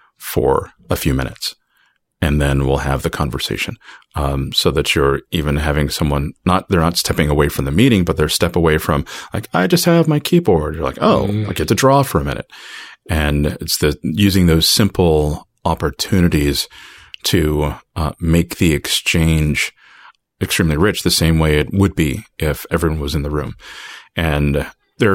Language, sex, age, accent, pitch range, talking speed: English, male, 30-49, American, 75-90 Hz, 175 wpm